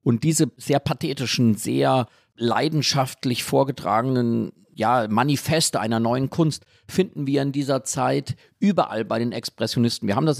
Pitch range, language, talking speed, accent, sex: 130-165 Hz, German, 140 wpm, German, male